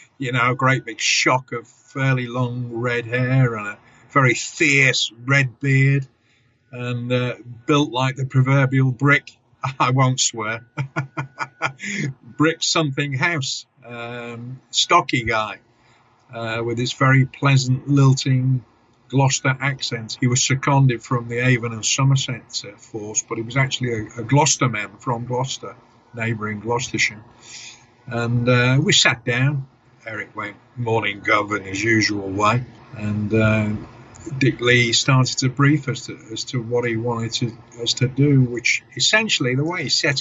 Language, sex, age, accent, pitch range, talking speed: English, male, 50-69, British, 115-135 Hz, 145 wpm